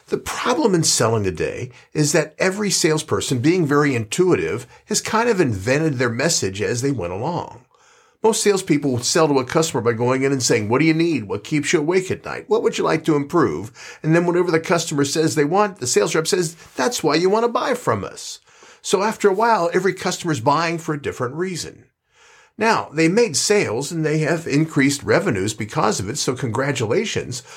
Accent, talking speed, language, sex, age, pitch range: American, 205 wpm, English, male, 50-69, 130-180 Hz